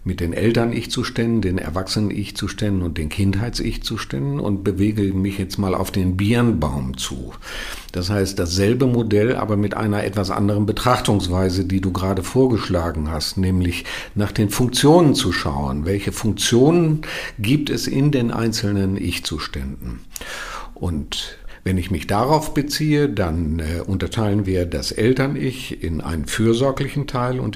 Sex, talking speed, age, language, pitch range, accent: male, 135 wpm, 50-69, German, 90-120 Hz, German